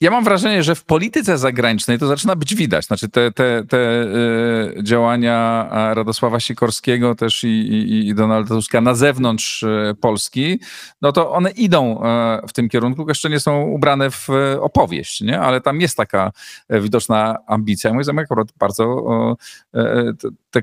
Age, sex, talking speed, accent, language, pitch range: 40-59, male, 150 wpm, native, Polish, 110-135 Hz